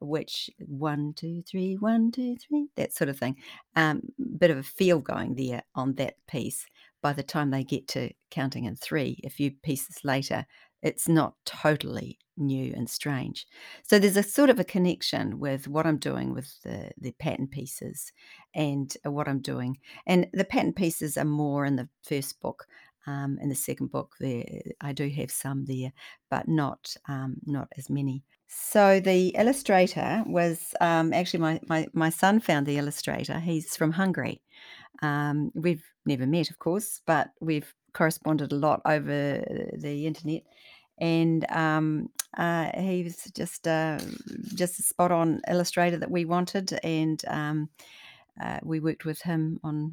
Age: 50-69